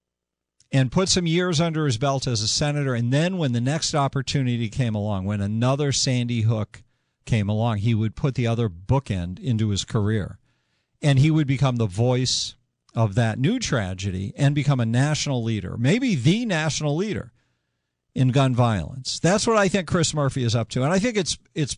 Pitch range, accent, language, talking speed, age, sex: 115-150 Hz, American, English, 190 wpm, 50-69, male